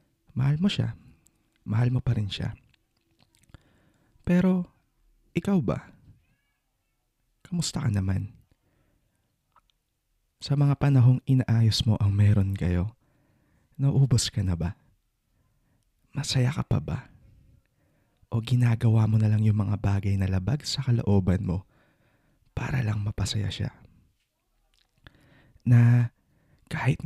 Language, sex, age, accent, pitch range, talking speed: English, male, 20-39, Filipino, 100-130 Hz, 110 wpm